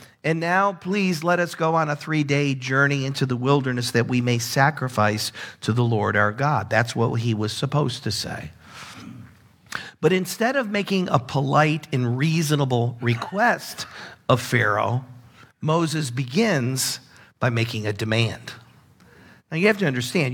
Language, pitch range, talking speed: English, 120-160 Hz, 150 wpm